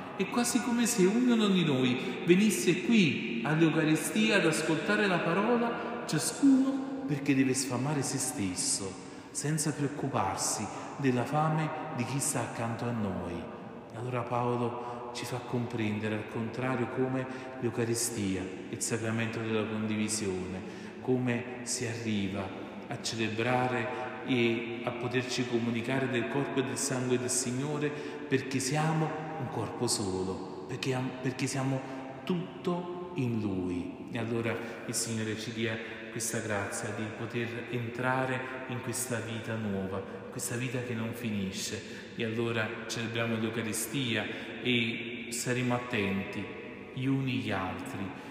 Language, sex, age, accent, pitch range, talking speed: Italian, male, 40-59, native, 115-135 Hz, 125 wpm